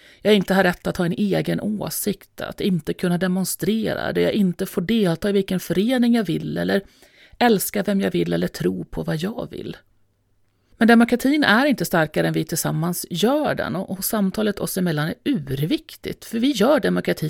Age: 30-49